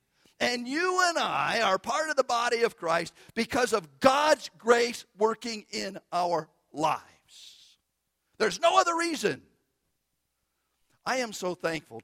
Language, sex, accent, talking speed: English, male, American, 135 wpm